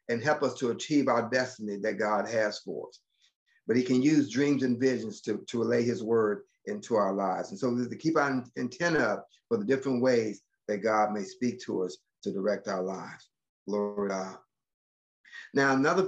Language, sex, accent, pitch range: English, male, American, 120-145 Hz